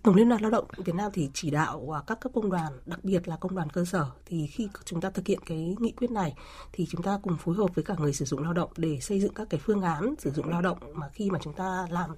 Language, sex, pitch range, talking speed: Vietnamese, female, 165-205 Hz, 295 wpm